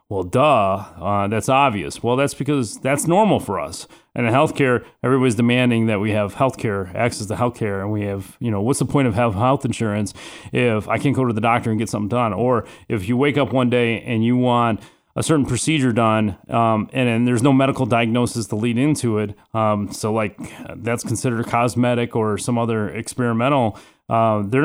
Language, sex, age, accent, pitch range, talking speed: English, male, 30-49, American, 105-125 Hz, 205 wpm